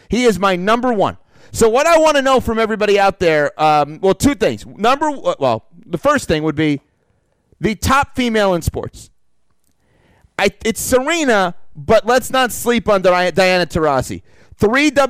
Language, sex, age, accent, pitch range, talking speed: English, male, 30-49, American, 190-260 Hz, 165 wpm